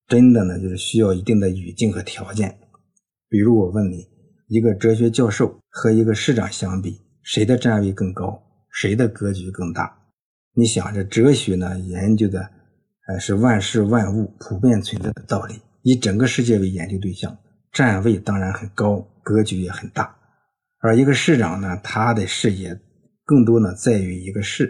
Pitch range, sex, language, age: 95-115 Hz, male, Chinese, 50-69